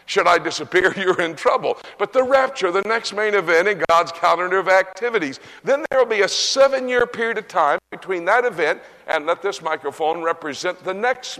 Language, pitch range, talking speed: English, 170-240 Hz, 195 wpm